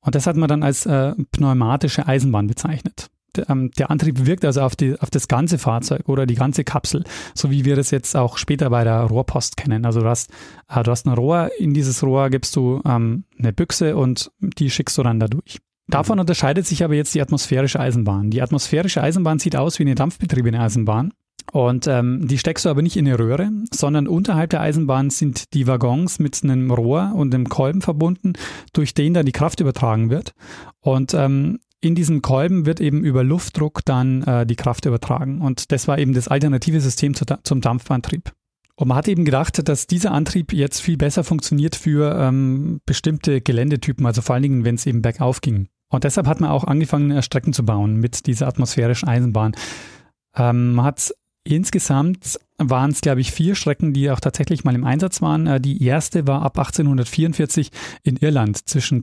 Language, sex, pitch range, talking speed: German, male, 130-160 Hz, 195 wpm